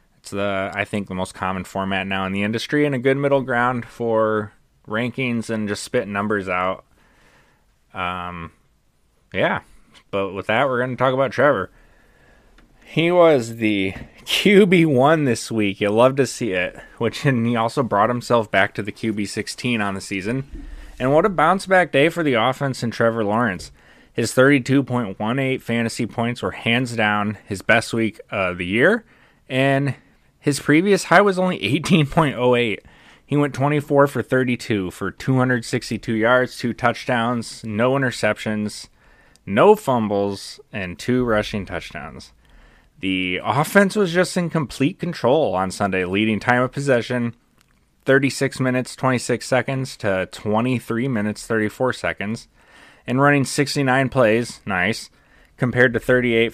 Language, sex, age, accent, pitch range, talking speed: English, male, 20-39, American, 105-135 Hz, 145 wpm